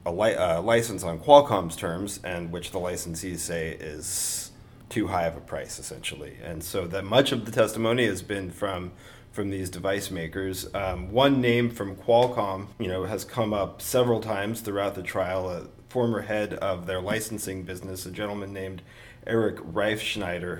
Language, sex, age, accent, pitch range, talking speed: English, male, 30-49, American, 90-110 Hz, 170 wpm